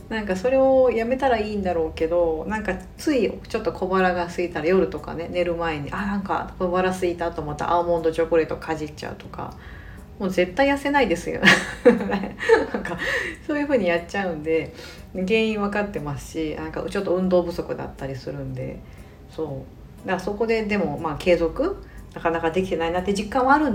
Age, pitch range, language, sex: 40-59, 160-230 Hz, Japanese, female